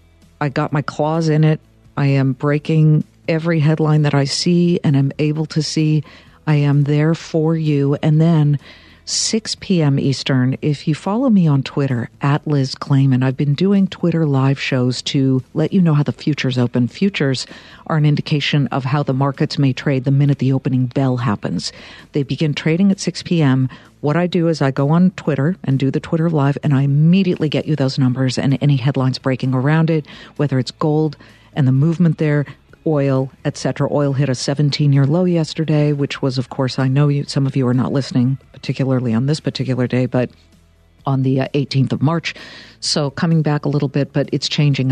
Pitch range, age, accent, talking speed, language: 130-155 Hz, 50-69, American, 200 wpm, English